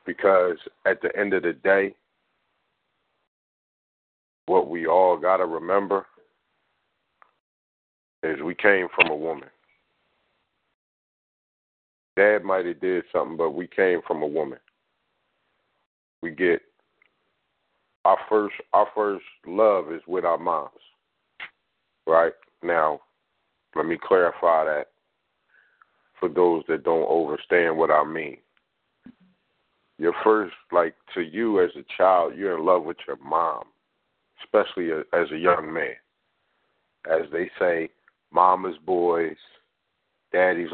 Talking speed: 115 wpm